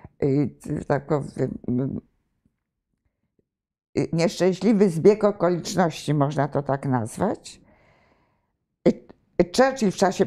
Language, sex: Polish, female